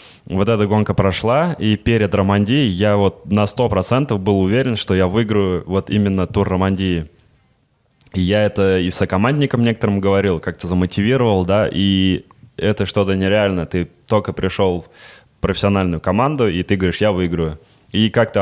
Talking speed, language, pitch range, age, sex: 155 wpm, Russian, 90-105 Hz, 20-39, male